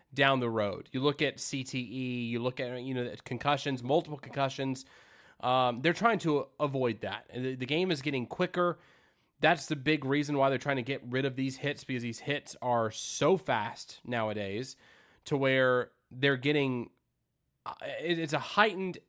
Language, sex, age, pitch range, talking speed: English, male, 20-39, 125-150 Hz, 170 wpm